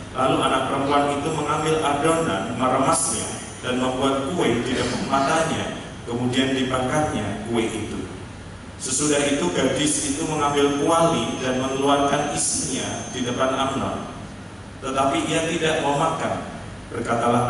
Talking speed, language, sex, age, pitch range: 115 wpm, Malay, male, 40-59, 110-145 Hz